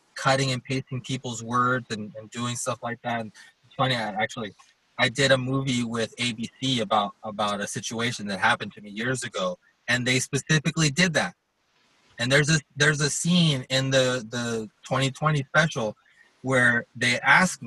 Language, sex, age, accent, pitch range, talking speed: English, male, 20-39, American, 115-145 Hz, 165 wpm